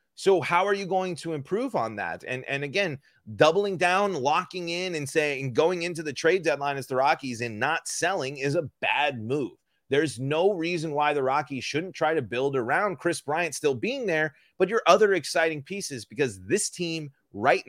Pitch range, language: 130-180 Hz, English